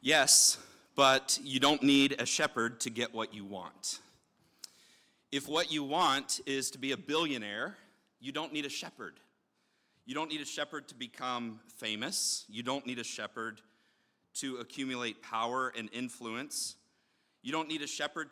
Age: 40-59